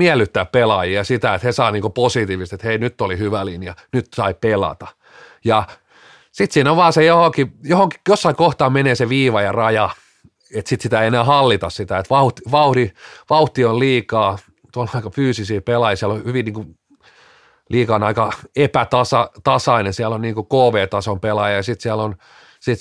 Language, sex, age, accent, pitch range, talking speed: Finnish, male, 30-49, native, 105-130 Hz, 175 wpm